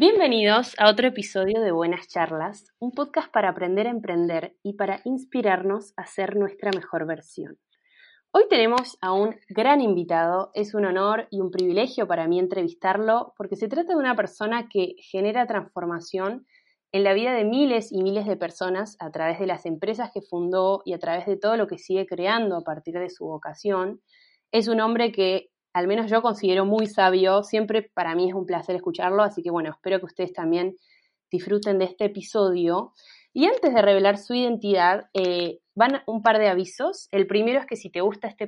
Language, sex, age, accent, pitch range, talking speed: Spanish, female, 20-39, Argentinian, 185-230 Hz, 190 wpm